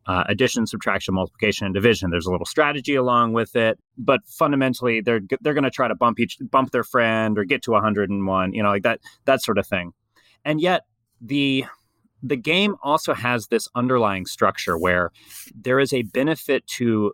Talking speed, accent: 190 wpm, American